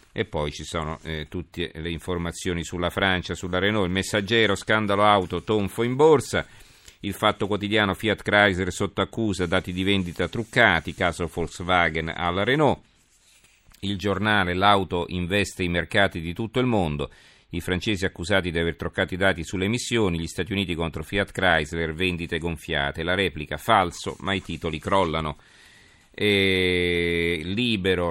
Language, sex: Italian, male